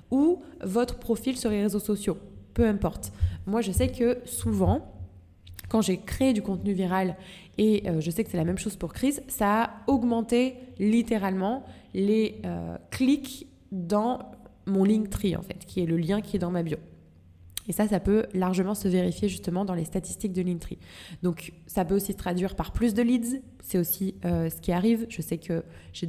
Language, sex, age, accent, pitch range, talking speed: French, female, 20-39, French, 165-205 Hz, 195 wpm